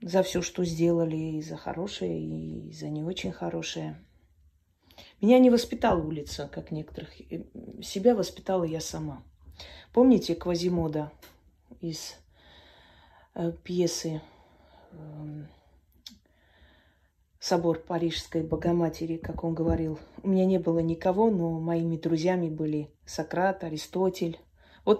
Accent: native